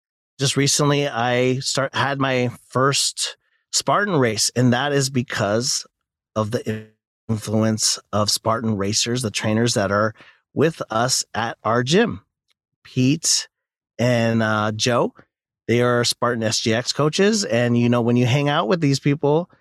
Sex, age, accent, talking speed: male, 30-49, American, 145 wpm